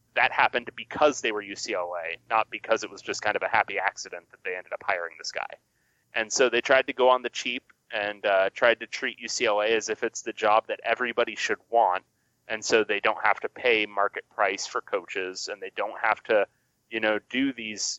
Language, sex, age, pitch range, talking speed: English, male, 30-49, 100-120 Hz, 225 wpm